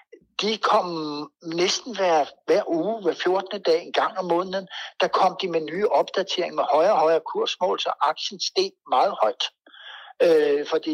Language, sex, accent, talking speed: Danish, male, native, 170 wpm